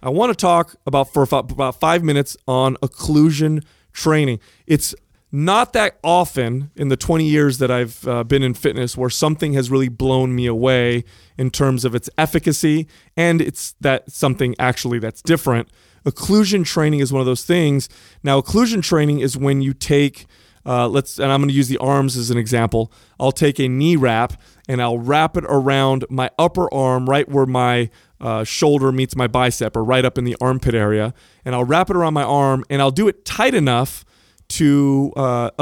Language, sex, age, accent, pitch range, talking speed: English, male, 30-49, American, 125-150 Hz, 190 wpm